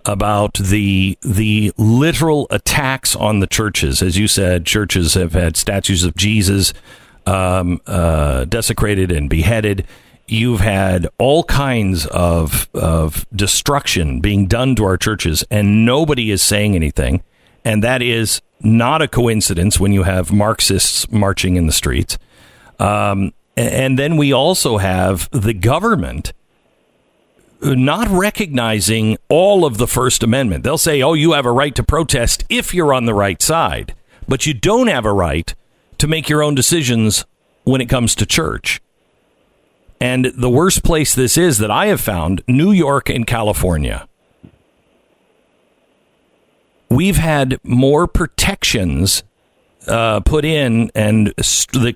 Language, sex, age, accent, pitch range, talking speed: English, male, 50-69, American, 95-130 Hz, 140 wpm